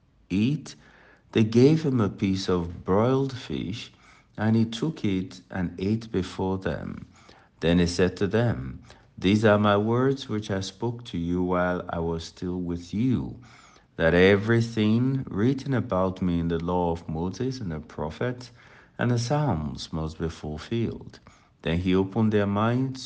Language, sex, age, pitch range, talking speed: English, male, 60-79, 85-110 Hz, 160 wpm